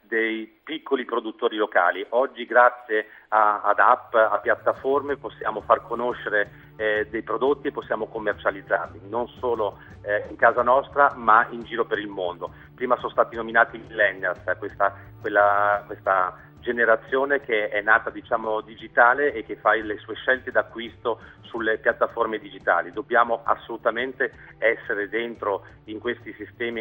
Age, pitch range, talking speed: 40-59, 105-120 Hz, 145 wpm